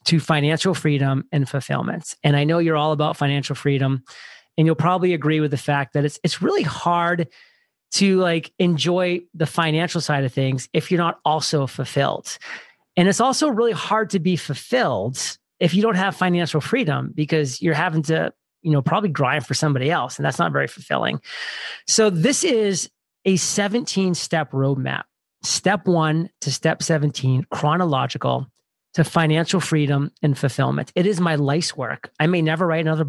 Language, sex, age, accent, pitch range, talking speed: English, male, 30-49, American, 145-175 Hz, 170 wpm